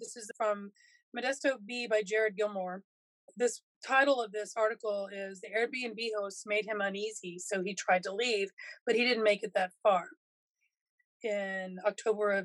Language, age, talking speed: English, 20-39, 170 wpm